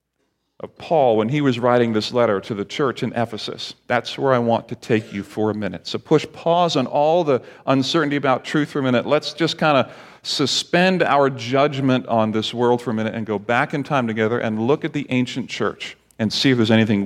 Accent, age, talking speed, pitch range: American, 40-59, 230 wpm, 115-145 Hz